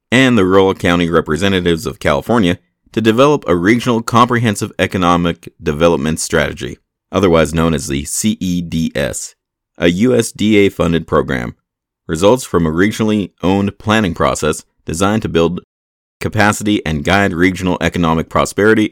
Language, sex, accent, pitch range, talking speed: English, male, American, 80-105 Hz, 125 wpm